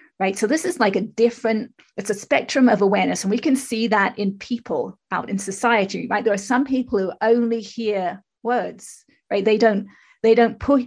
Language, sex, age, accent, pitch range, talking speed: English, female, 30-49, British, 205-245 Hz, 200 wpm